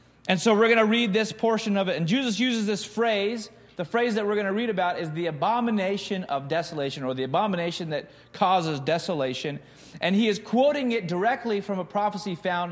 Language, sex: English, male